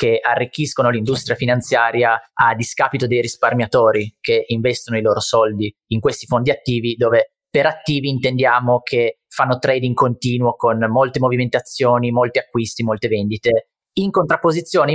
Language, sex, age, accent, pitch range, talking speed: Italian, male, 30-49, native, 120-145 Hz, 135 wpm